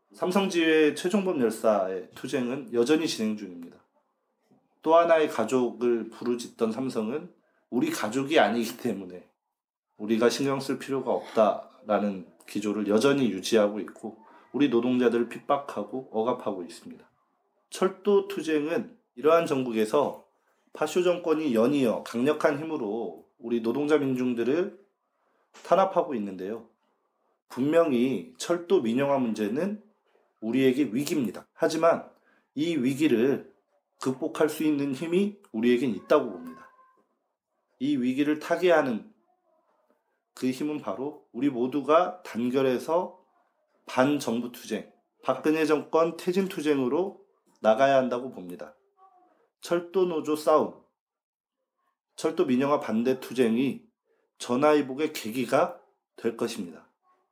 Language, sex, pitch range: Korean, male, 120-180 Hz